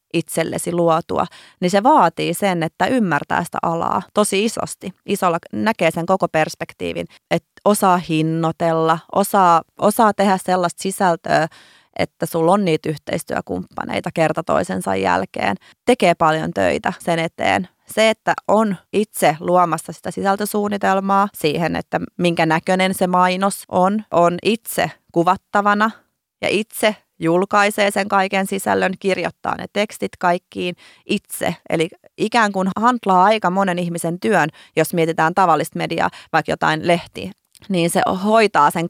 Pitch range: 165-200 Hz